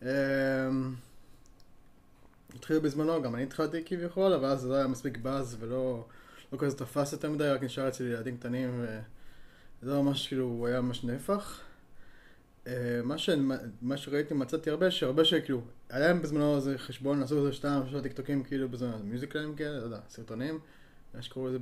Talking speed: 155 wpm